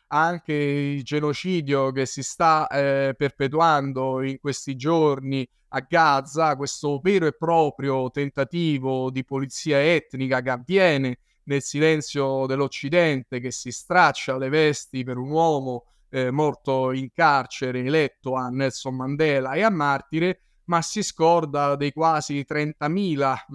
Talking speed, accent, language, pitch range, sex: 130 wpm, native, Italian, 135-155 Hz, male